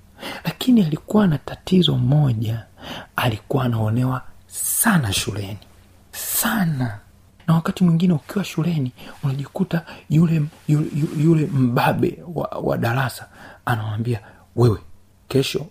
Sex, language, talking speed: male, Swahili, 100 wpm